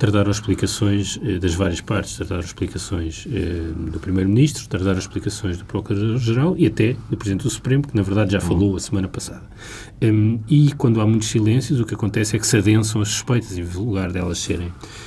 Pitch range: 100-125 Hz